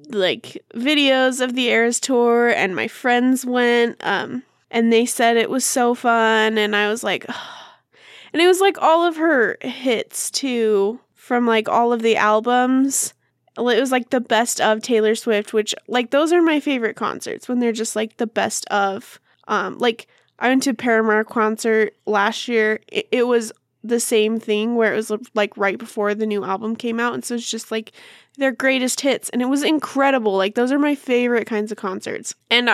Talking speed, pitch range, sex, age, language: 195 wpm, 215-245 Hz, female, 10-29, English